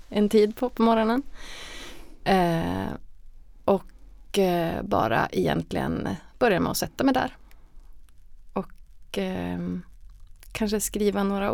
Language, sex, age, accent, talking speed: Swedish, female, 30-49, native, 95 wpm